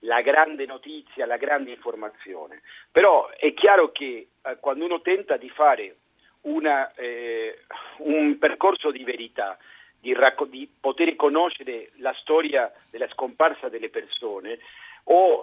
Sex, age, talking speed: male, 50-69, 130 wpm